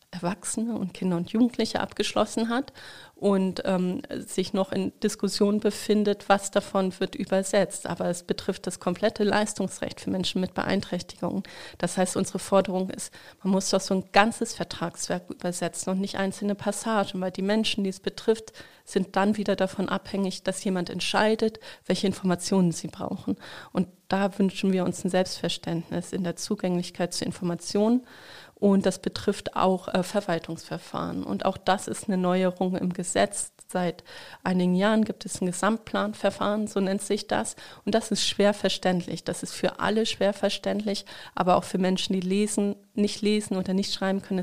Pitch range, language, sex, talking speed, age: 180-205 Hz, German, female, 165 wpm, 30-49